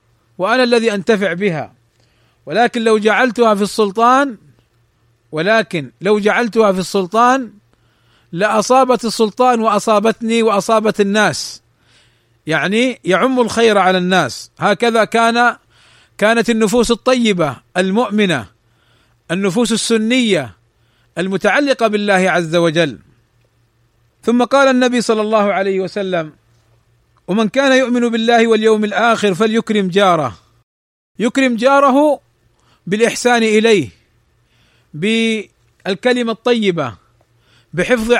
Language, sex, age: Arabic, male, 40-59